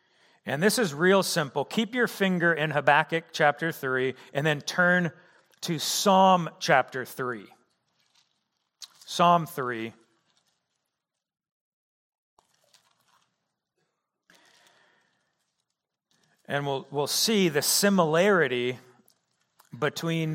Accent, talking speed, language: American, 85 wpm, English